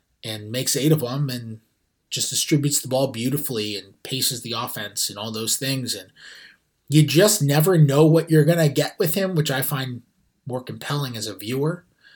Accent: American